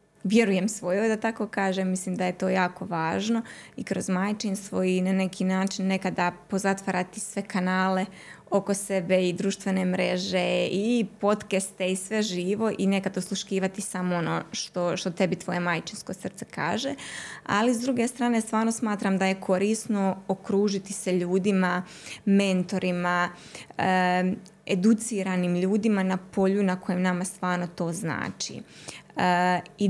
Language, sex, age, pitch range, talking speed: Croatian, female, 20-39, 185-215 Hz, 135 wpm